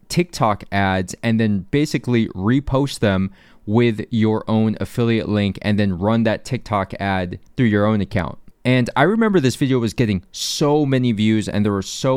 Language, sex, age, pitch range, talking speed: English, male, 20-39, 110-140 Hz, 180 wpm